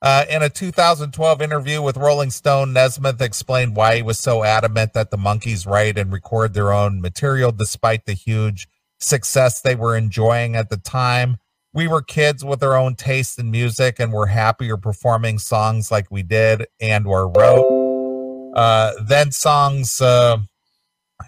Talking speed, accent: 165 wpm, American